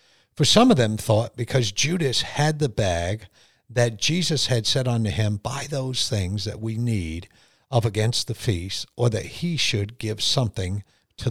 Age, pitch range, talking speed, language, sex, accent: 50-69, 105-125 Hz, 175 wpm, English, male, American